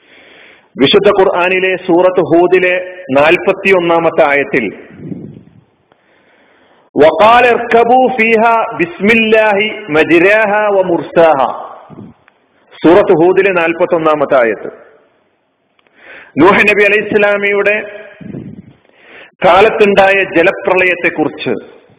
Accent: native